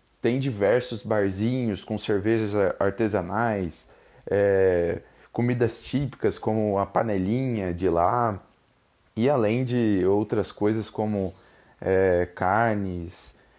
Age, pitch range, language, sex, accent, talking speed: 20-39, 100-125 Hz, Portuguese, male, Brazilian, 90 wpm